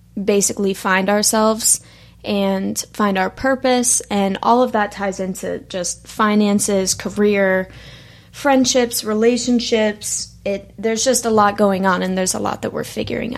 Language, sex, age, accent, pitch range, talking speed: English, female, 20-39, American, 195-225 Hz, 145 wpm